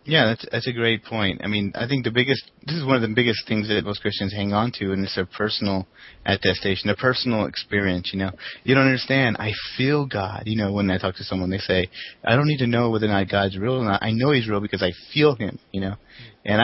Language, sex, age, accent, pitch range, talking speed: English, male, 30-49, American, 100-125 Hz, 265 wpm